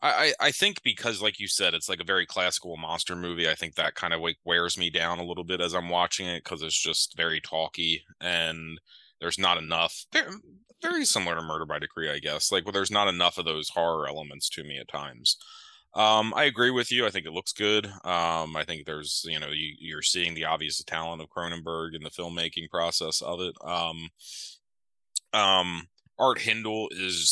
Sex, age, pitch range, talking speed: male, 20-39, 85-100 Hz, 210 wpm